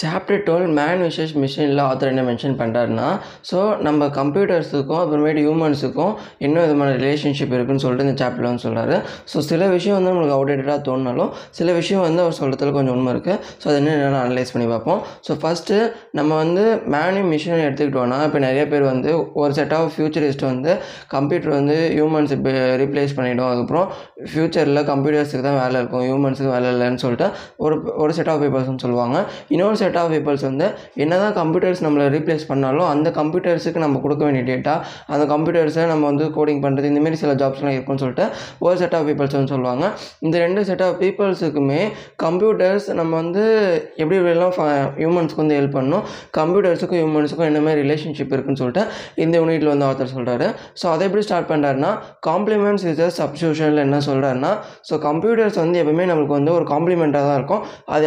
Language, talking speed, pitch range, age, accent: Tamil, 140 wpm, 140-170 Hz, 20-39, native